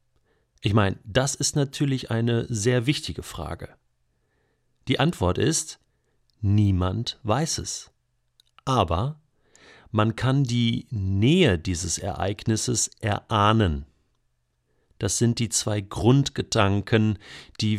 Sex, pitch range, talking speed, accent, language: male, 95-125 Hz, 100 wpm, German, German